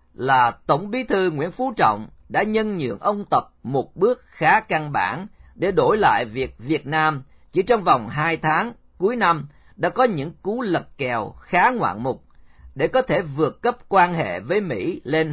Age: 40-59